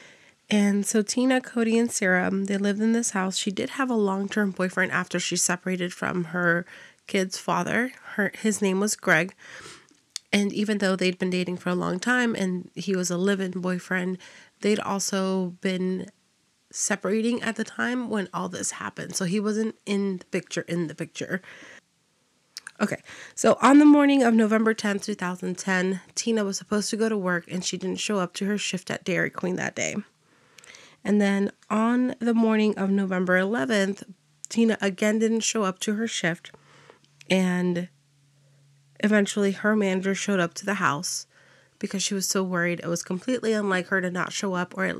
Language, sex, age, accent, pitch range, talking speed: English, female, 30-49, American, 180-215 Hz, 180 wpm